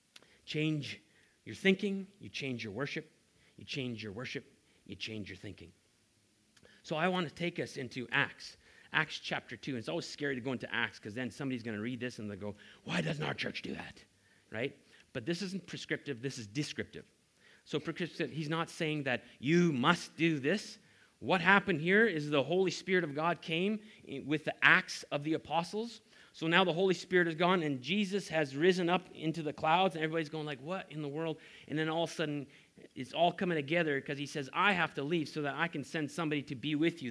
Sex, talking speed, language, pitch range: male, 215 wpm, English, 140-175 Hz